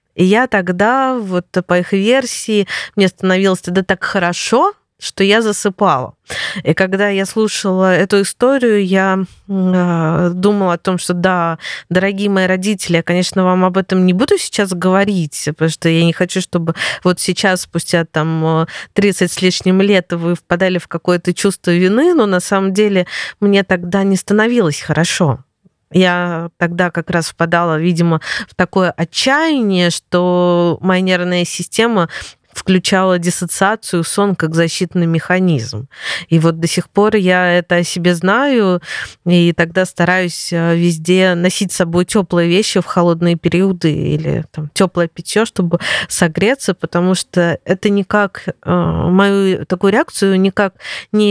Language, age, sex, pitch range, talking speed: Russian, 20-39, female, 175-200 Hz, 145 wpm